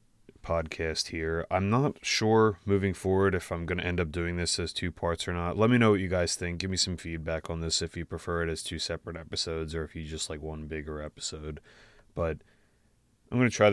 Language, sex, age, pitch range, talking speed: English, male, 20-39, 80-95 Hz, 235 wpm